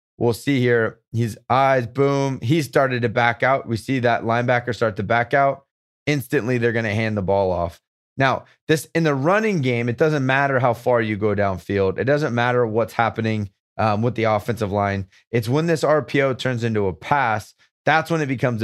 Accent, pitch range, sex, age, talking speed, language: American, 110-140 Hz, male, 30-49, 205 wpm, English